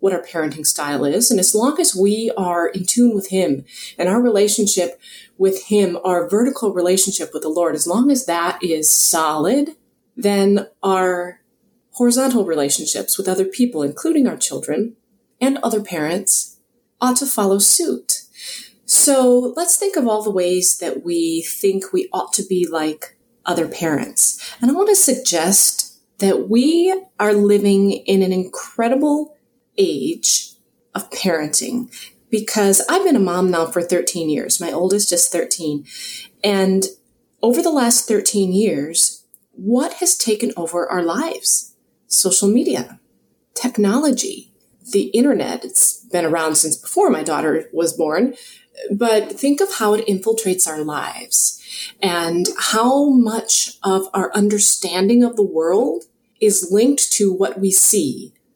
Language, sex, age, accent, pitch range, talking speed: English, female, 30-49, American, 180-245 Hz, 145 wpm